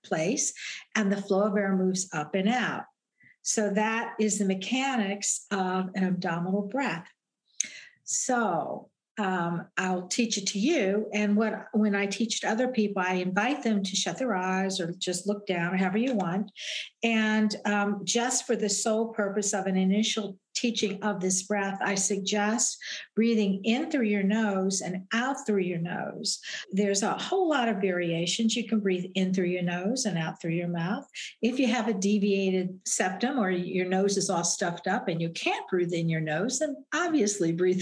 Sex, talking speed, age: female, 185 wpm, 60-79